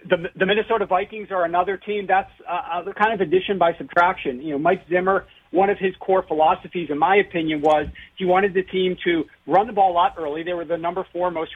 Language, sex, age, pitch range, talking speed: English, male, 40-59, 155-195 Hz, 230 wpm